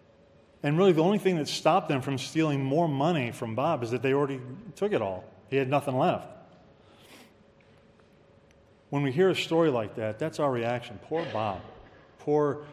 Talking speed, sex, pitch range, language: 180 wpm, male, 115-150 Hz, English